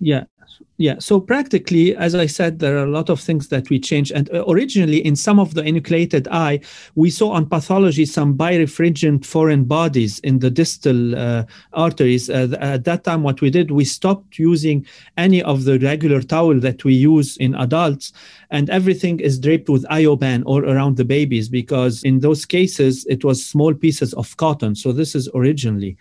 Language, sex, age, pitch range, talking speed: English, male, 40-59, 135-170 Hz, 185 wpm